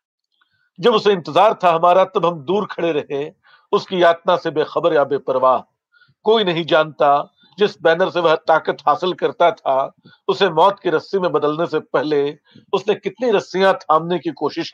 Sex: male